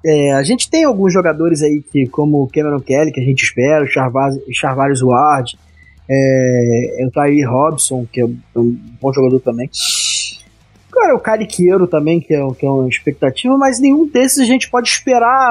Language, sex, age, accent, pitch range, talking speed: Portuguese, male, 20-39, Brazilian, 135-190 Hz, 160 wpm